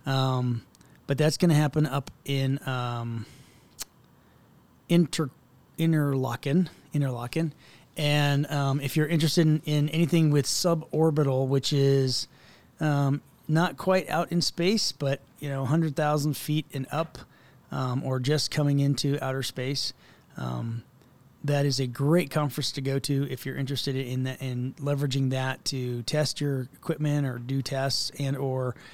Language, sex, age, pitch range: English, male, 30-49, 130-150 Hz